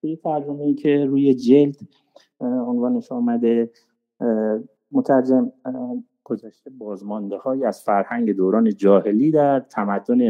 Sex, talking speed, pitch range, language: male, 105 wpm, 105-145 Hz, Persian